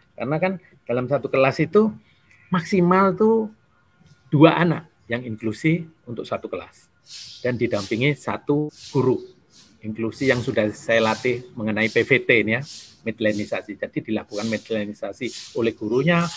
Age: 40-59